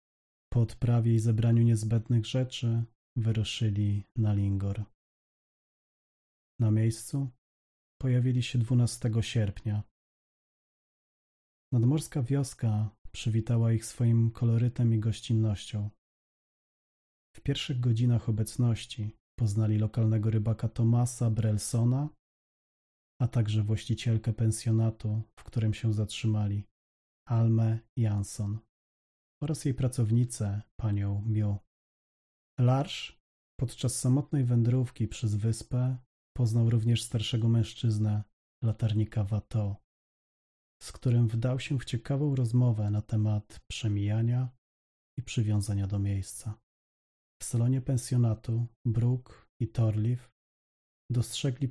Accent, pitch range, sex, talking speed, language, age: native, 105-120 Hz, male, 95 wpm, Polish, 40-59